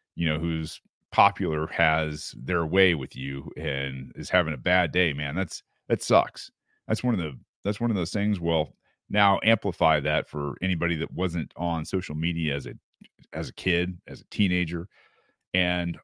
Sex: male